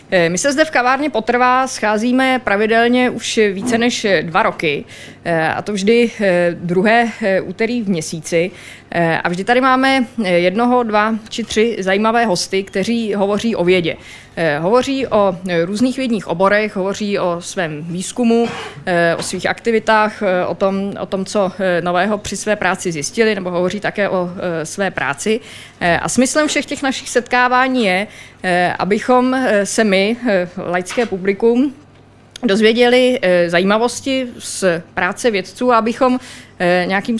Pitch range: 180-225 Hz